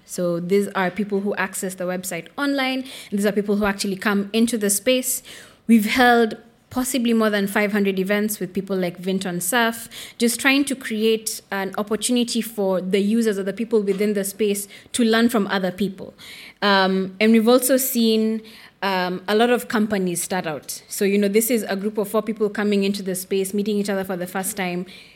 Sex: female